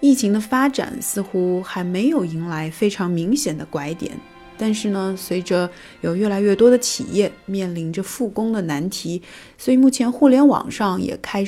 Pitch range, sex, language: 180-240 Hz, female, Chinese